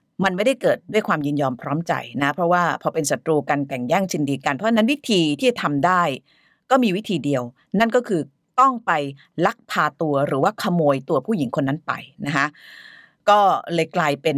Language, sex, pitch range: Thai, female, 145-215 Hz